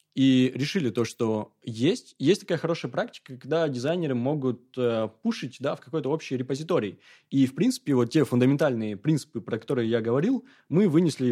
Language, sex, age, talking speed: Russian, male, 20-39, 170 wpm